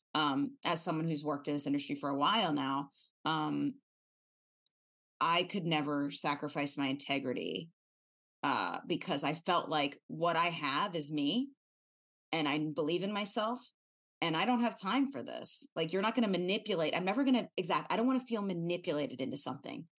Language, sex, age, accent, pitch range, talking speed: English, female, 30-49, American, 145-190 Hz, 180 wpm